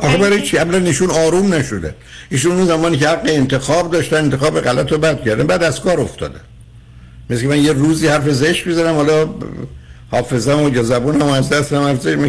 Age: 60-79